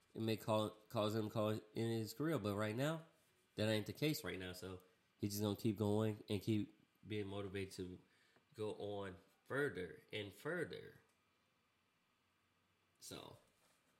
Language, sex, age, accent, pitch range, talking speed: English, male, 20-39, American, 100-115 Hz, 155 wpm